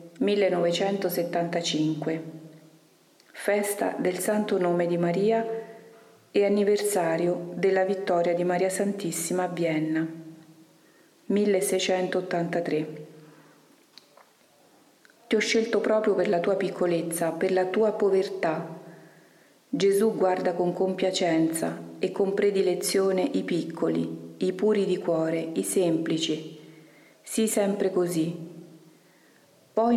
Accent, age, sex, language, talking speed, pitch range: native, 40-59, female, Italian, 95 wpm, 165-195 Hz